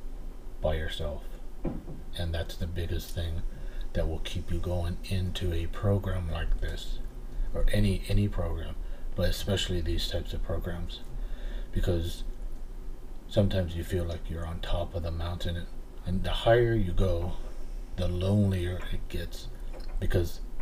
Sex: male